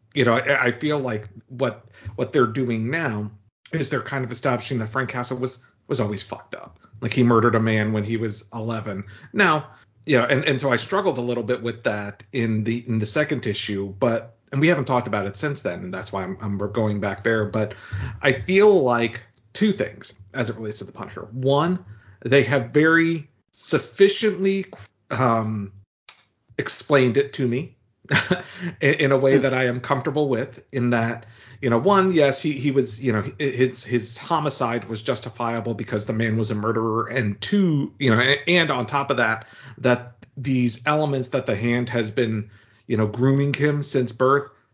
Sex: male